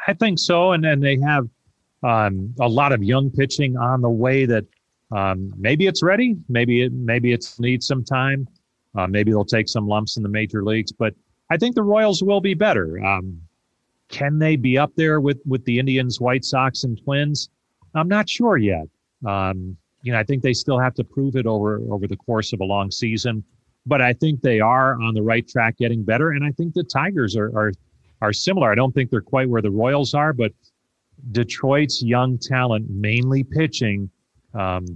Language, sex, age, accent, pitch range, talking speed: English, male, 40-59, American, 100-135 Hz, 205 wpm